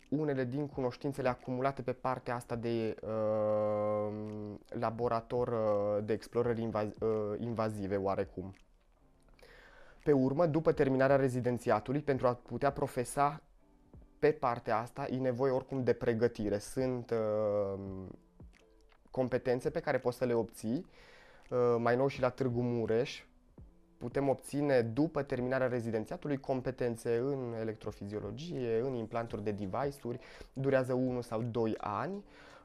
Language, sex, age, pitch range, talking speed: Romanian, male, 20-39, 115-135 Hz, 125 wpm